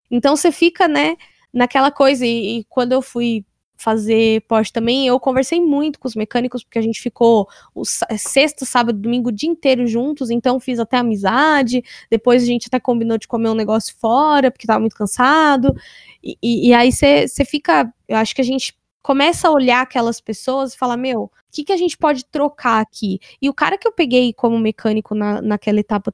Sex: female